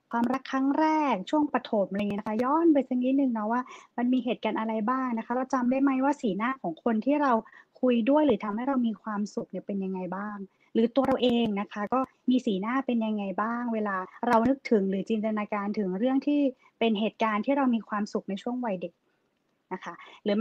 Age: 20-39